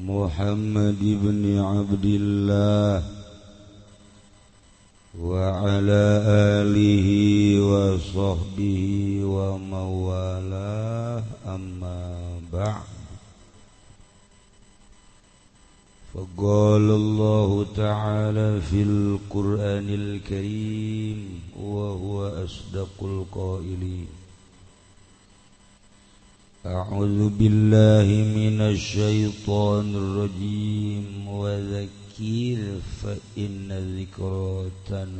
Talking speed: 45 wpm